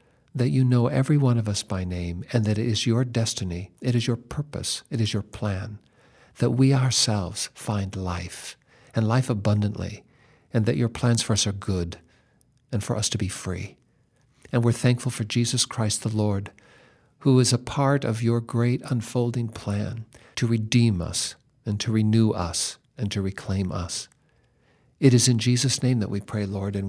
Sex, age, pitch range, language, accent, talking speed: male, 50-69, 100-125 Hz, English, American, 185 wpm